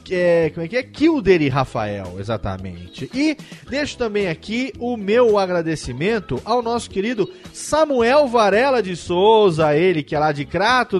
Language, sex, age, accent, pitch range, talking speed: Portuguese, male, 40-59, Brazilian, 150-215 Hz, 160 wpm